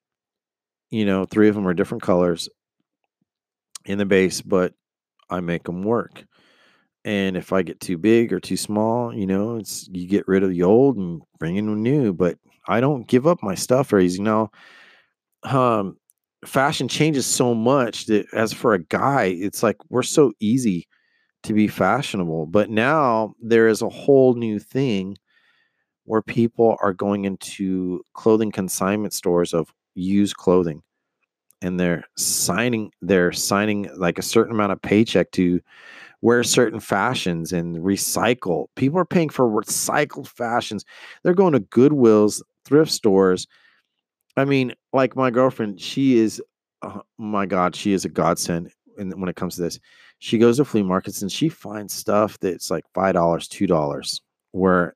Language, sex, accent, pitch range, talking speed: English, male, American, 95-115 Hz, 165 wpm